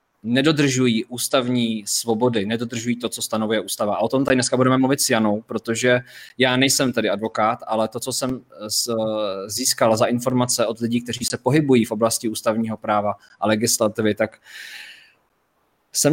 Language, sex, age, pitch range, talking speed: Czech, male, 20-39, 115-140 Hz, 155 wpm